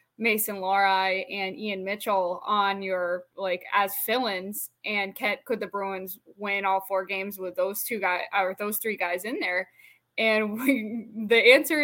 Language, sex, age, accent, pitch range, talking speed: English, female, 10-29, American, 195-230 Hz, 155 wpm